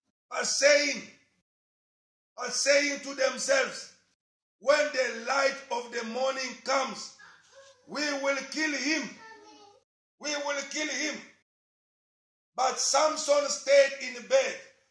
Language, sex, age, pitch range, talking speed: English, male, 50-69, 250-280 Hz, 100 wpm